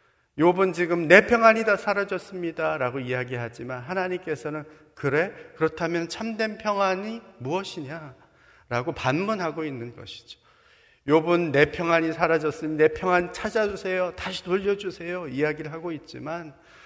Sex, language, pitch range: male, Korean, 130-185 Hz